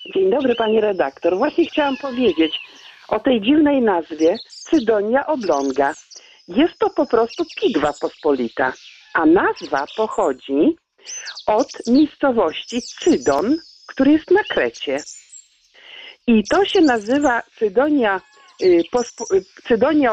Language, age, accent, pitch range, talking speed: Polish, 50-69, native, 225-345 Hz, 105 wpm